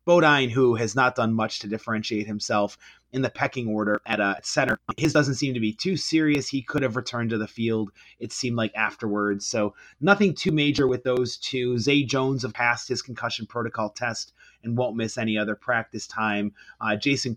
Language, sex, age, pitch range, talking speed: English, male, 30-49, 110-130 Hz, 200 wpm